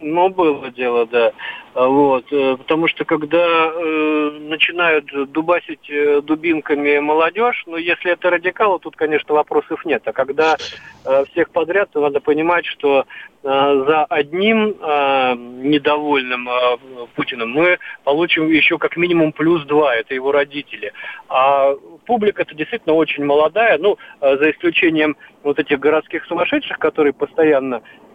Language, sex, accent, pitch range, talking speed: Russian, male, native, 135-165 Hz, 130 wpm